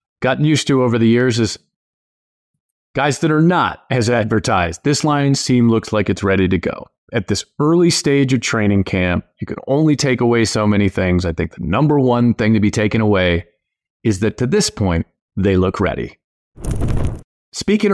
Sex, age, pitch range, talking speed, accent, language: male, 30-49, 100-130 Hz, 185 wpm, American, English